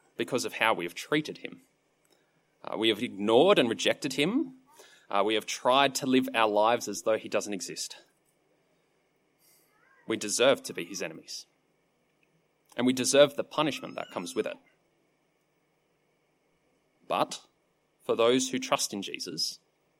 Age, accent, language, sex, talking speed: 30-49, Australian, English, male, 145 wpm